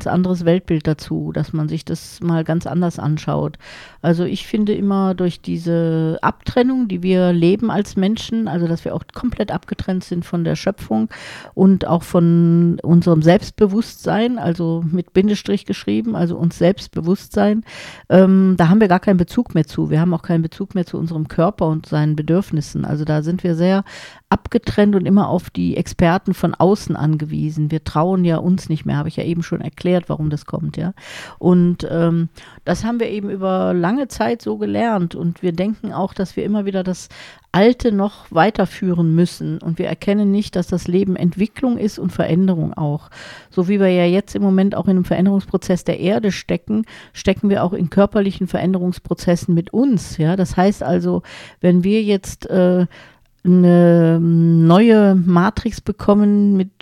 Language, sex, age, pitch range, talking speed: German, female, 50-69, 170-195 Hz, 175 wpm